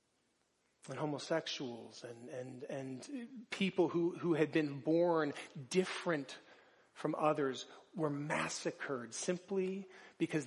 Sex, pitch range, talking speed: male, 140-170 Hz, 105 wpm